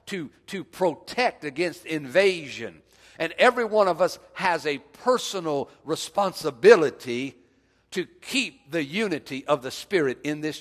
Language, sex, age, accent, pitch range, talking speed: English, male, 50-69, American, 140-200 Hz, 130 wpm